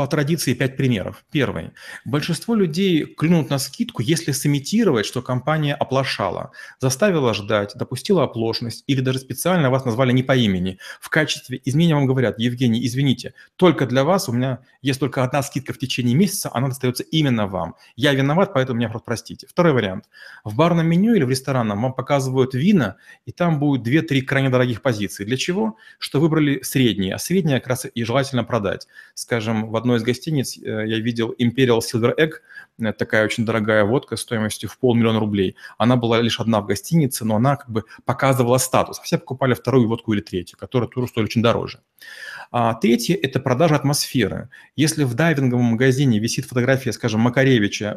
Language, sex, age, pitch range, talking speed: Russian, male, 30-49, 115-145 Hz, 175 wpm